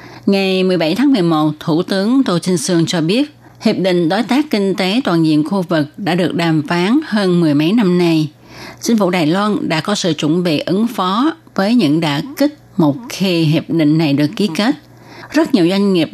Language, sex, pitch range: Vietnamese, female, 160-210 Hz